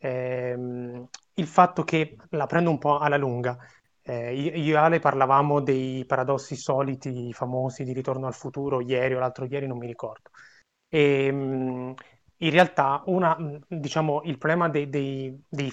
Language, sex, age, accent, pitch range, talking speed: Italian, male, 30-49, native, 130-155 Hz, 155 wpm